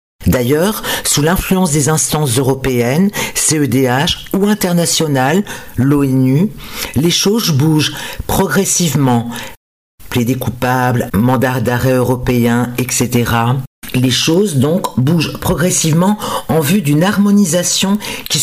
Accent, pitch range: French, 130-190 Hz